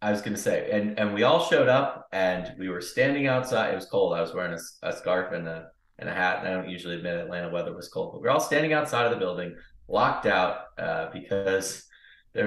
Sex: male